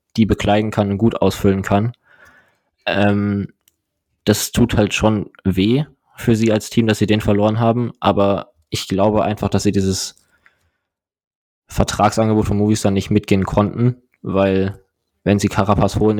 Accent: German